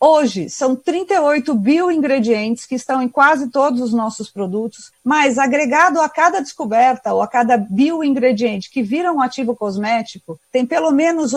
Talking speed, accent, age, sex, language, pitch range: 155 wpm, Brazilian, 50-69, female, Portuguese, 225-285 Hz